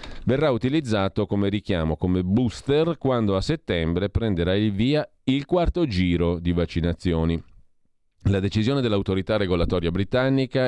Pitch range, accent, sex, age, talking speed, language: 85-110 Hz, native, male, 40-59, 125 wpm, Italian